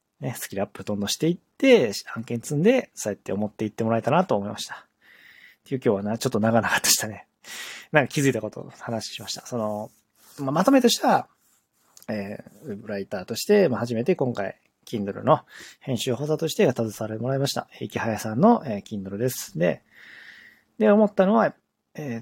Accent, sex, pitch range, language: native, male, 115-160 Hz, Japanese